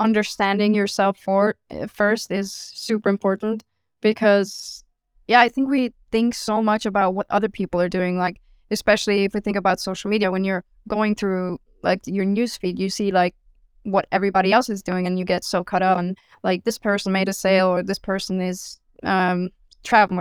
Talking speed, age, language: 185 wpm, 20-39, English